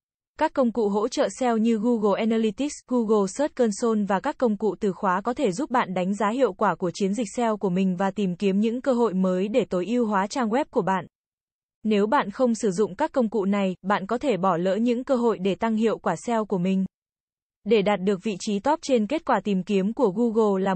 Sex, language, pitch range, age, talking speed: female, Vietnamese, 195-240 Hz, 20-39, 245 wpm